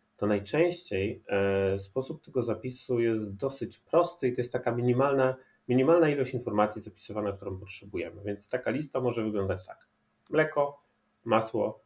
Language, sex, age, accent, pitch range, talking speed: Polish, male, 30-49, native, 105-135 Hz, 135 wpm